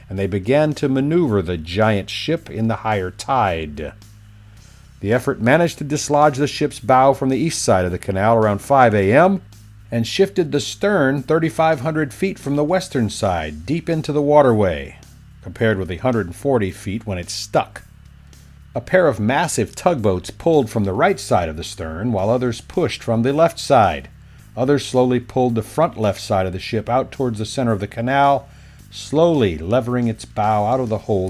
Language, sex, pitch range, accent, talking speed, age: English, male, 100-135 Hz, American, 185 wpm, 50-69